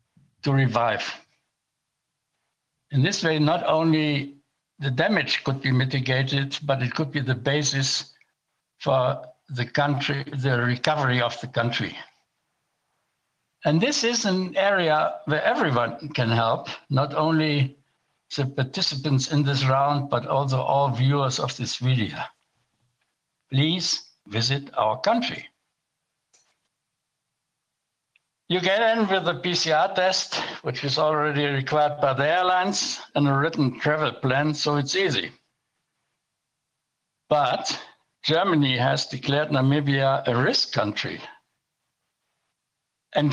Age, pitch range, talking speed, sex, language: 60-79, 135-165 Hz, 115 wpm, male, English